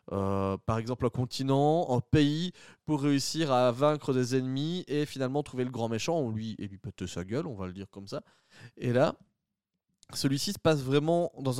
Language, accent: French, French